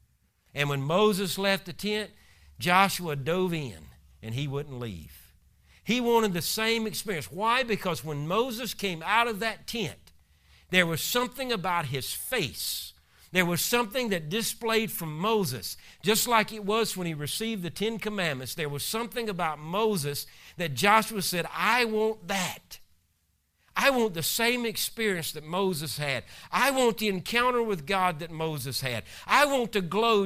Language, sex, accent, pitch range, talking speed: English, male, American, 150-220 Hz, 165 wpm